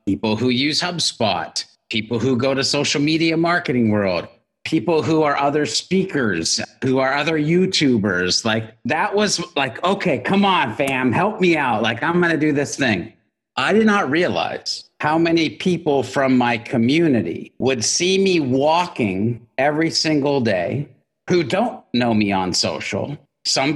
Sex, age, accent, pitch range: male, 50-69, American, 120-190 Hz